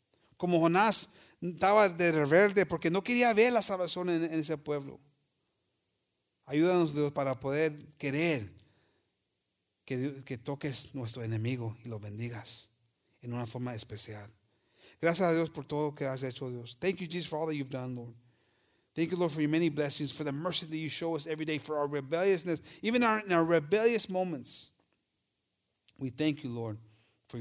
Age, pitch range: 40-59, 135-165 Hz